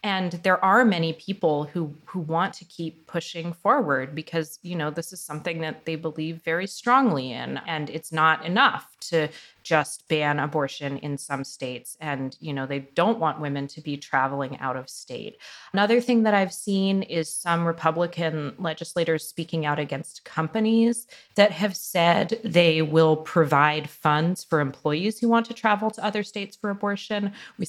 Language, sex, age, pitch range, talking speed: English, female, 30-49, 150-195 Hz, 175 wpm